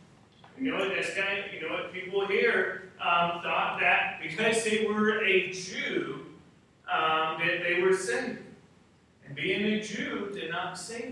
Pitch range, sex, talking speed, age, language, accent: 155-210 Hz, male, 145 wpm, 40-59, English, American